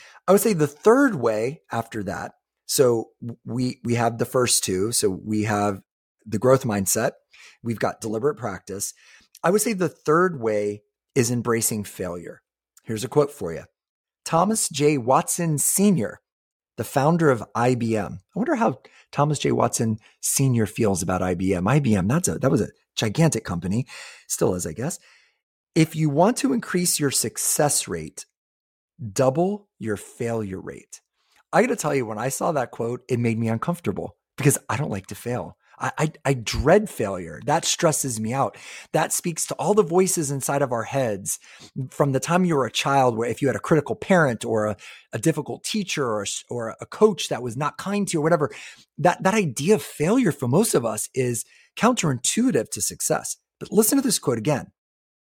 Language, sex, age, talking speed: English, male, 30-49, 185 wpm